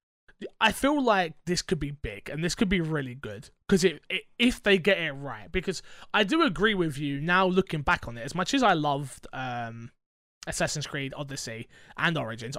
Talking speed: 210 wpm